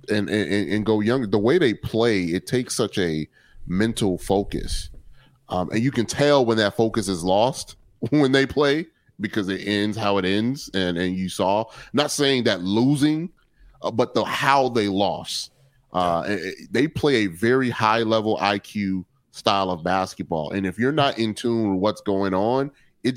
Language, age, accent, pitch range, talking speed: English, 30-49, American, 95-125 Hz, 185 wpm